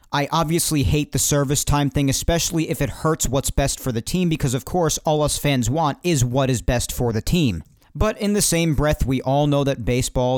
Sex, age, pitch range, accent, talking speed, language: male, 40-59, 130-175 Hz, American, 230 wpm, English